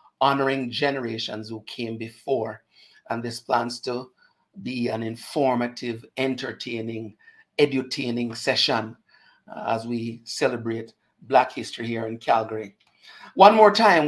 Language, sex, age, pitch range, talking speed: English, male, 60-79, 115-130 Hz, 110 wpm